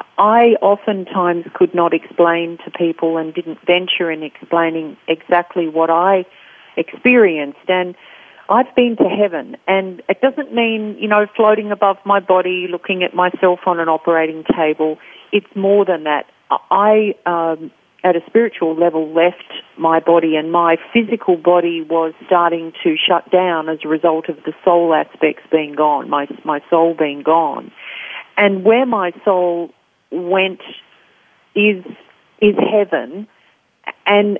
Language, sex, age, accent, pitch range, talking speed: English, female, 40-59, Australian, 165-200 Hz, 145 wpm